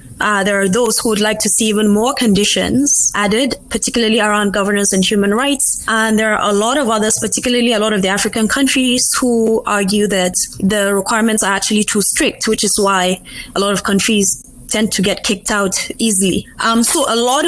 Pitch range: 200-230 Hz